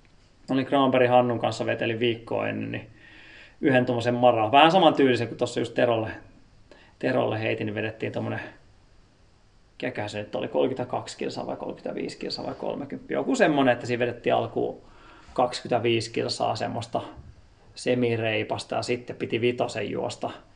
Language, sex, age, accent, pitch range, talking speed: Finnish, male, 30-49, native, 110-130 Hz, 130 wpm